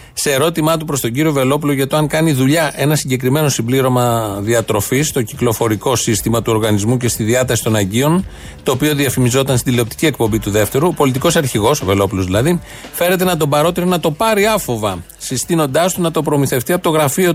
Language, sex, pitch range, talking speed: Greek, male, 130-165 Hz, 195 wpm